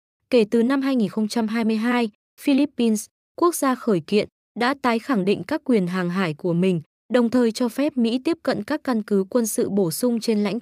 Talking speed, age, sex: 200 wpm, 20-39, female